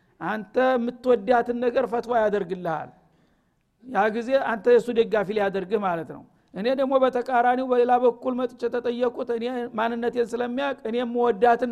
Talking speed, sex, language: 130 wpm, male, Amharic